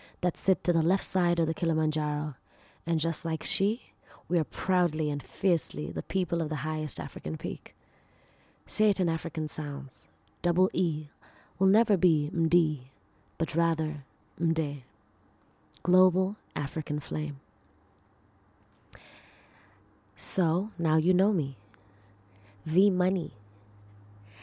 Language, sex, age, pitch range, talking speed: English, female, 20-39, 130-180 Hz, 120 wpm